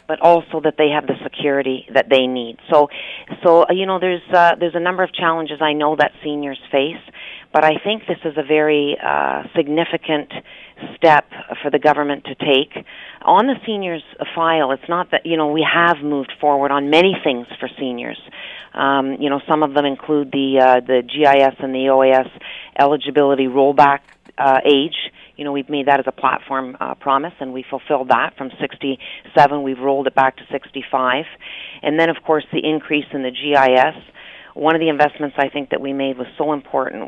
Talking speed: 195 wpm